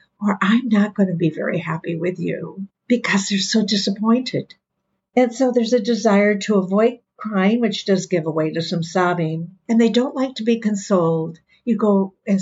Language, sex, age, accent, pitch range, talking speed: English, female, 60-79, American, 180-225 Hz, 190 wpm